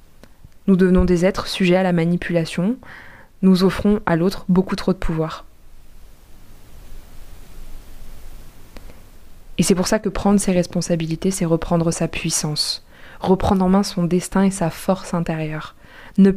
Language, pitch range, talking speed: French, 165-195 Hz, 140 wpm